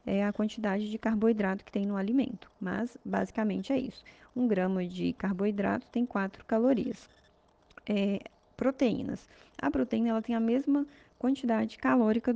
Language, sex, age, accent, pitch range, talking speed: Portuguese, female, 20-39, Brazilian, 205-250 Hz, 145 wpm